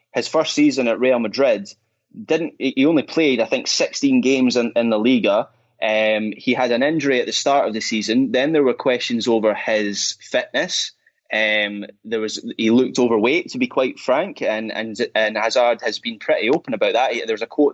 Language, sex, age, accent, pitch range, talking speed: English, male, 20-39, British, 110-150 Hz, 200 wpm